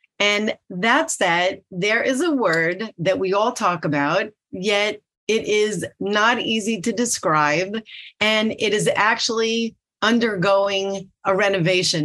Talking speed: 135 wpm